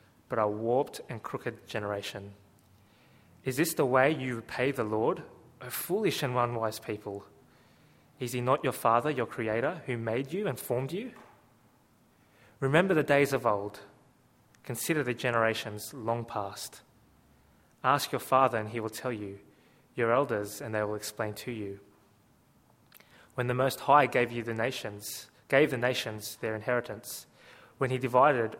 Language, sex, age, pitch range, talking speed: English, male, 20-39, 105-125 Hz, 155 wpm